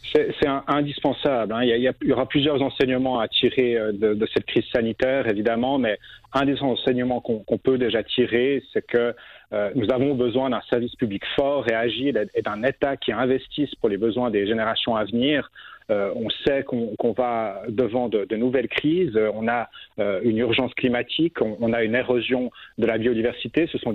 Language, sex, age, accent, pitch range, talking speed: French, male, 40-59, French, 115-135 Hz, 190 wpm